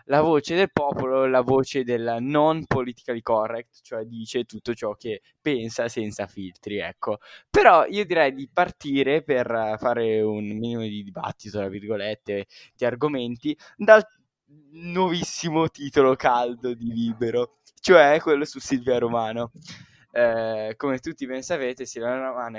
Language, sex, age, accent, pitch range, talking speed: Italian, male, 10-29, native, 110-140 Hz, 140 wpm